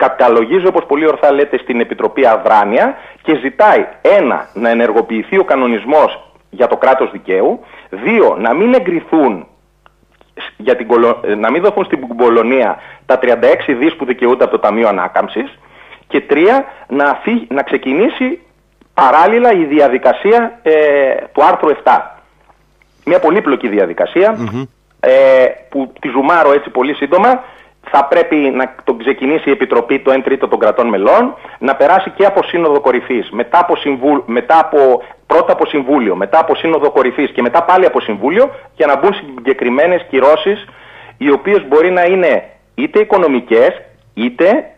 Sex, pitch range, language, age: male, 135-205 Hz, Greek, 30-49